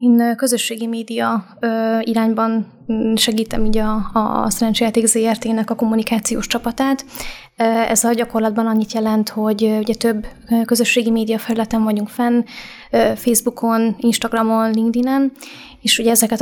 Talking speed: 120 wpm